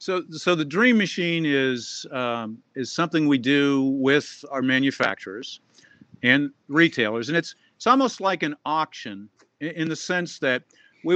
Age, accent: 50-69, American